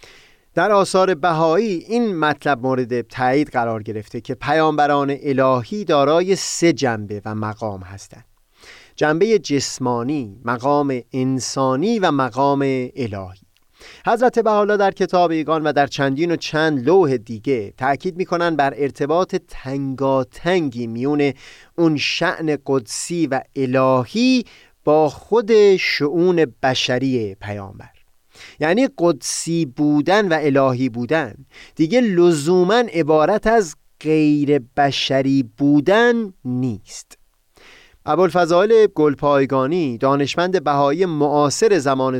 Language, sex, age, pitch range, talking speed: Persian, male, 30-49, 130-180 Hz, 105 wpm